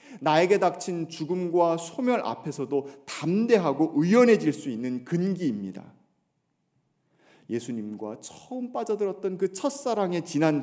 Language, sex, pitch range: Korean, male, 145-230 Hz